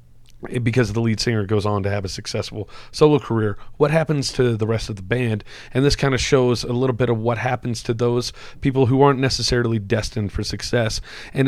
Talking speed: 215 wpm